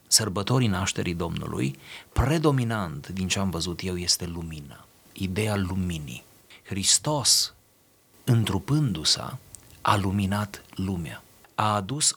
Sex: male